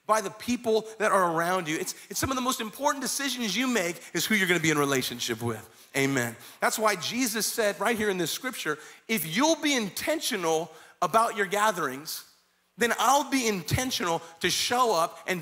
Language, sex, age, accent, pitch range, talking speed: English, male, 30-49, American, 185-245 Hz, 195 wpm